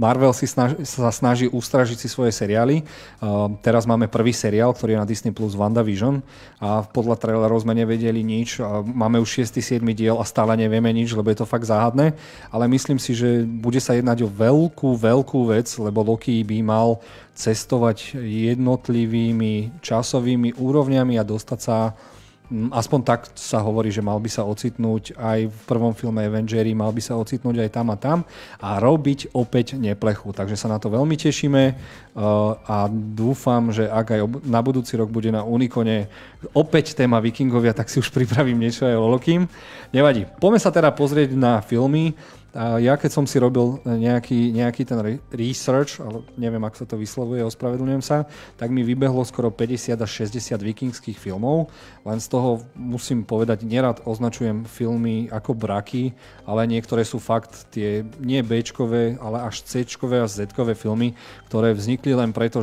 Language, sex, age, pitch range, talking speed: Slovak, male, 30-49, 110-125 Hz, 170 wpm